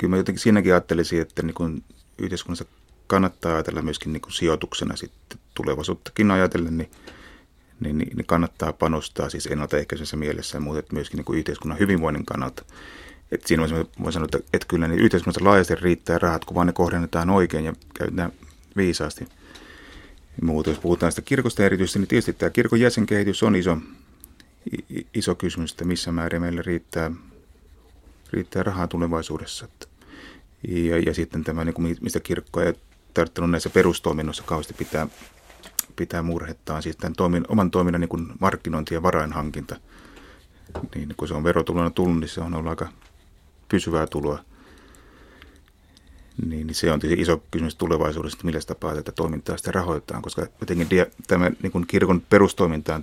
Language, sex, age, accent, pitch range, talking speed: Finnish, male, 30-49, native, 80-90 Hz, 160 wpm